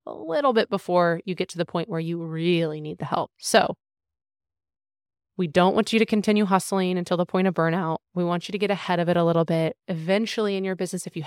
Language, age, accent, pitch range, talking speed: English, 20-39, American, 165-185 Hz, 240 wpm